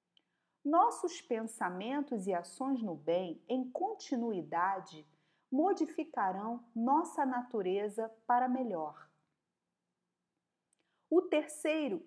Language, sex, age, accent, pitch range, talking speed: Portuguese, female, 40-59, Brazilian, 185-285 Hz, 75 wpm